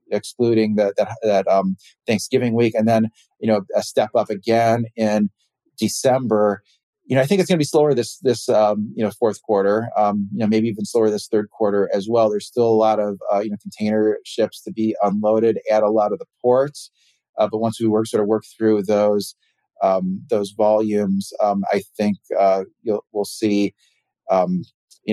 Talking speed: 205 wpm